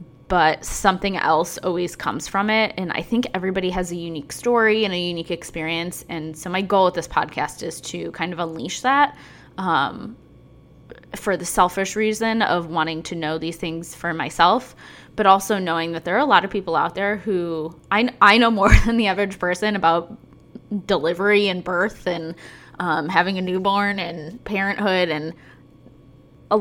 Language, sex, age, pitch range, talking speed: English, female, 10-29, 160-200 Hz, 180 wpm